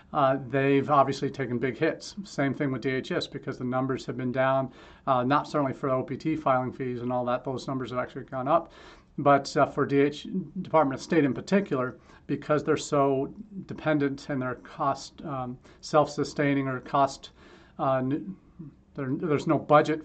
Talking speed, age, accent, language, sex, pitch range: 170 wpm, 40-59, American, English, male, 130-150 Hz